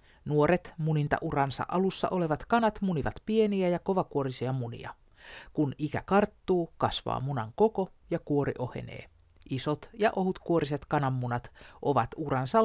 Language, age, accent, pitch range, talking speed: Finnish, 50-69, native, 130-180 Hz, 130 wpm